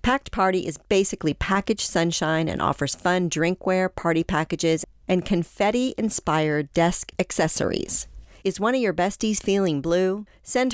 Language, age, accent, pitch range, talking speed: English, 40-59, American, 155-200 Hz, 135 wpm